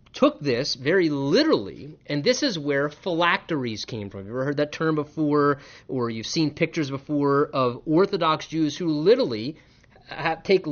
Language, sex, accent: English, male, American